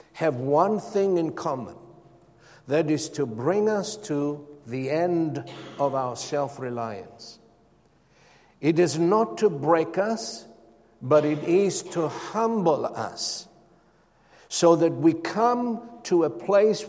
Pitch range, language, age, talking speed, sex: 125-175 Hz, English, 60-79, 125 wpm, male